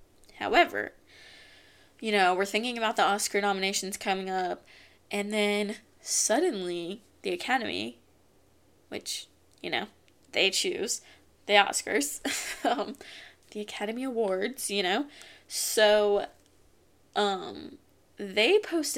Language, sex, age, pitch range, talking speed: English, female, 20-39, 200-265 Hz, 105 wpm